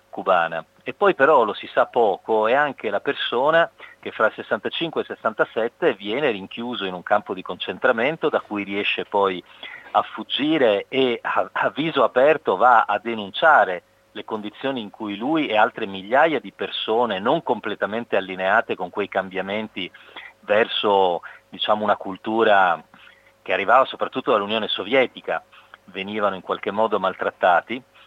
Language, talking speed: Italian, 150 wpm